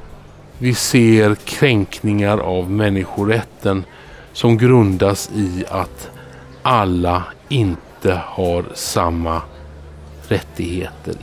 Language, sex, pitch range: Swedish, male, 90-115 Hz